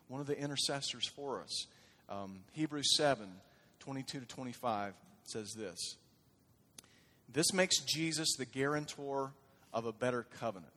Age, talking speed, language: 40-59, 130 wpm, English